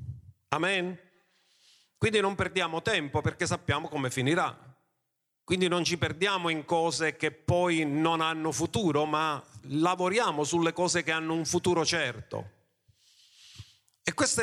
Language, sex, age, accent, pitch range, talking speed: Italian, male, 50-69, native, 120-185 Hz, 130 wpm